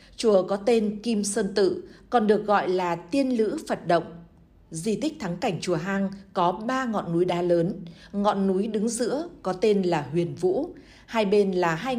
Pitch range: 180-230 Hz